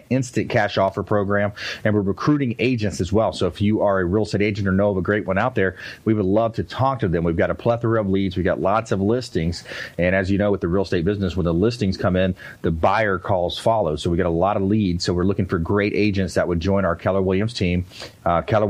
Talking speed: 270 wpm